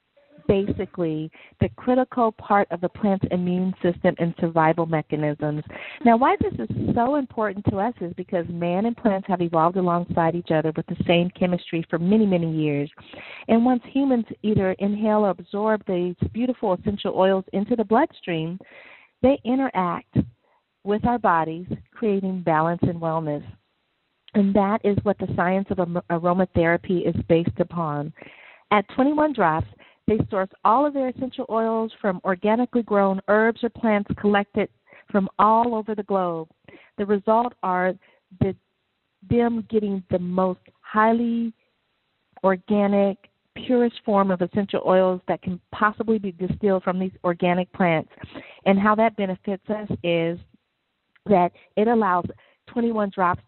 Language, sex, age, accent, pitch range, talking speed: English, female, 40-59, American, 175-220 Hz, 145 wpm